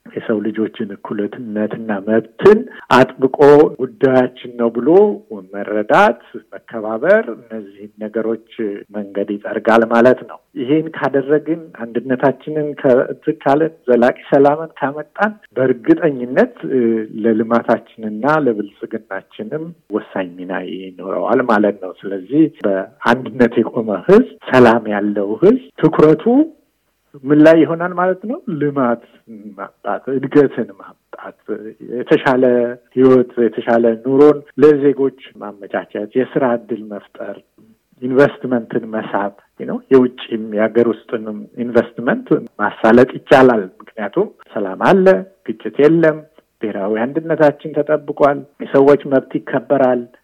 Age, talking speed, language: 60-79, 90 wpm, Amharic